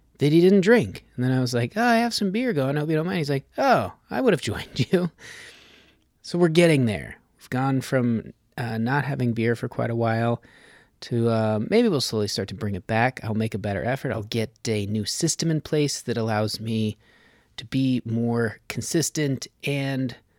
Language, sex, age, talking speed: English, male, 30-49, 215 wpm